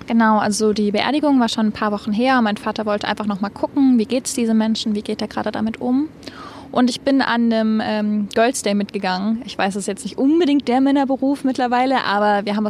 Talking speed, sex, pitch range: 225 wpm, female, 215-245 Hz